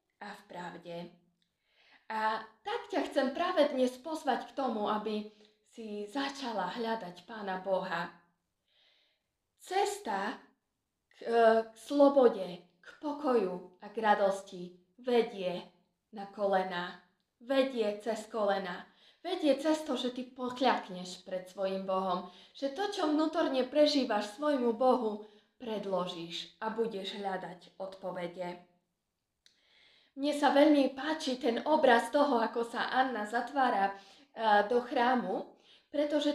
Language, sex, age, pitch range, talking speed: Slovak, female, 20-39, 200-265 Hz, 110 wpm